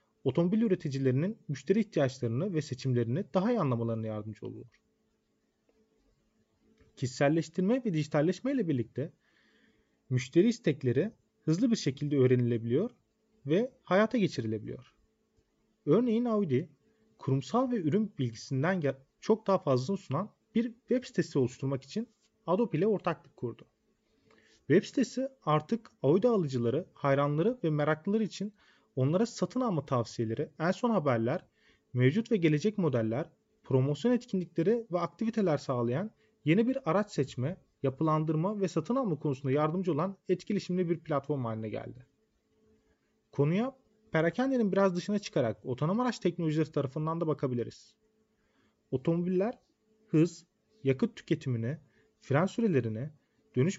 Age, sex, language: 40-59, male, Turkish